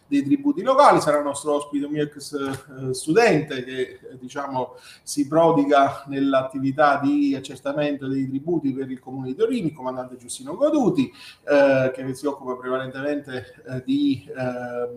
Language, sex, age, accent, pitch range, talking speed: Italian, male, 40-59, native, 130-160 Hz, 150 wpm